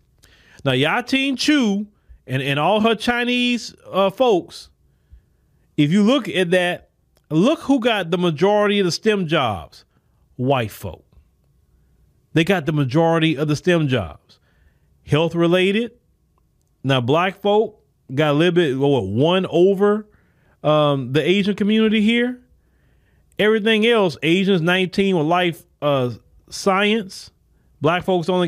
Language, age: English, 30-49